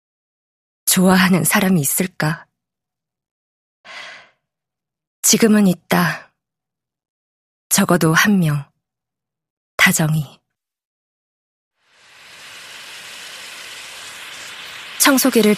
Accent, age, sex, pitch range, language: native, 20-39, female, 160-205 Hz, Korean